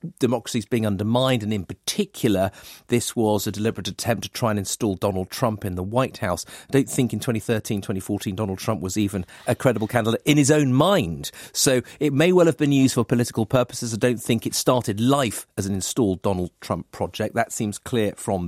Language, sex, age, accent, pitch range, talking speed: English, male, 40-59, British, 105-125 Hz, 205 wpm